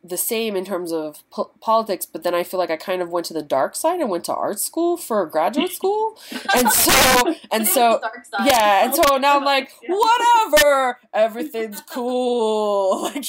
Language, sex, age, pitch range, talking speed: English, female, 20-39, 165-240 Hz, 190 wpm